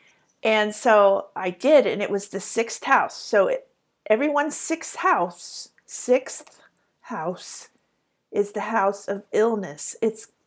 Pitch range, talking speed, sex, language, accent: 195-255 Hz, 130 wpm, female, English, American